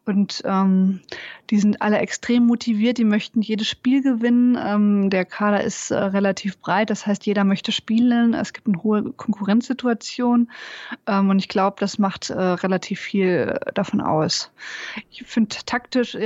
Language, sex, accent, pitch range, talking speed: German, female, German, 190-220 Hz, 160 wpm